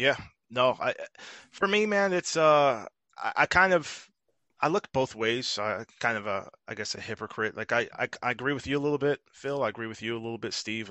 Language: English